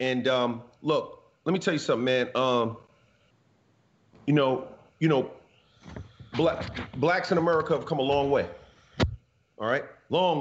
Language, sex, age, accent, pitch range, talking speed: English, male, 40-59, American, 130-160 Hz, 150 wpm